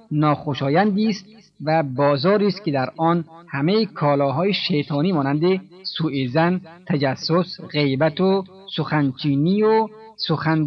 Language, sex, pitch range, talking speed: Persian, male, 140-190 Hz, 105 wpm